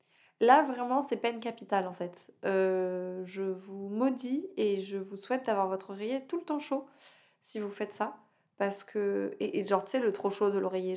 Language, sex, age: French, female, 20-39